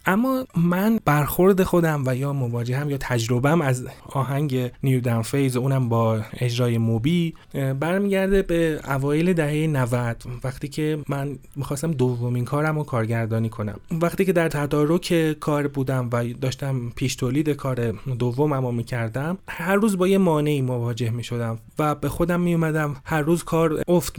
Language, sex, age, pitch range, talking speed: Persian, male, 30-49, 125-155 Hz, 160 wpm